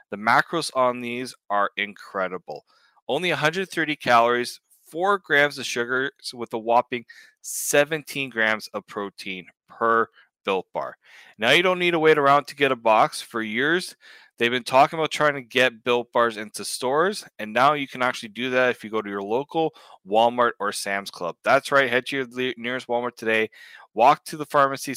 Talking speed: 185 wpm